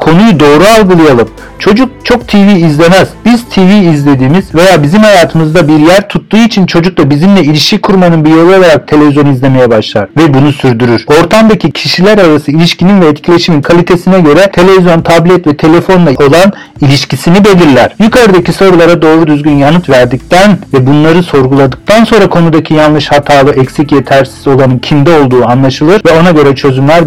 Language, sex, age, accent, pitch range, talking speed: Turkish, male, 50-69, native, 140-180 Hz, 155 wpm